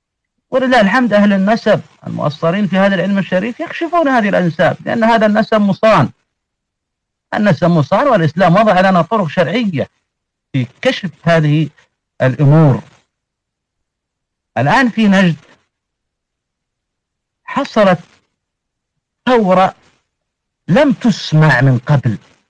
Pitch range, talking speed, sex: 155-220 Hz, 95 wpm, male